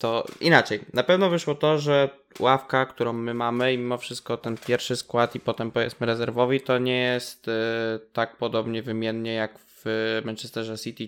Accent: native